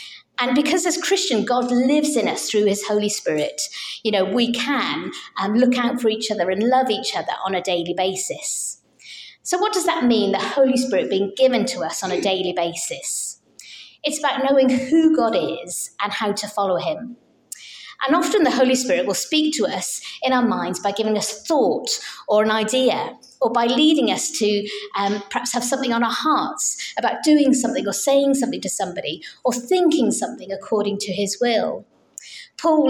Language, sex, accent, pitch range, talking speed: English, female, British, 200-265 Hz, 190 wpm